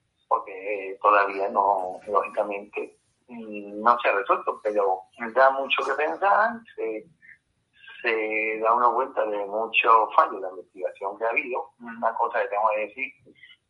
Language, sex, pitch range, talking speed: Spanish, male, 105-135 Hz, 150 wpm